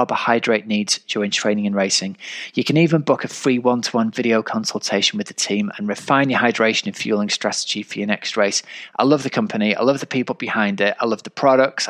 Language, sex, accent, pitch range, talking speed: English, male, British, 105-135 Hz, 215 wpm